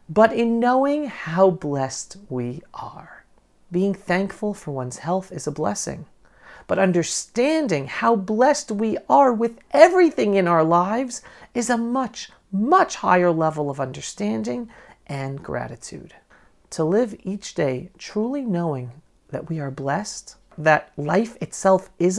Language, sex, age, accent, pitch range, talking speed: English, male, 40-59, American, 155-225 Hz, 135 wpm